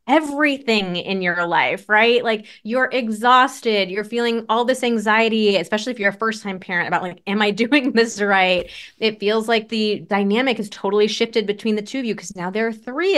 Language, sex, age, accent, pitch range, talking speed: English, female, 20-39, American, 190-240 Hz, 200 wpm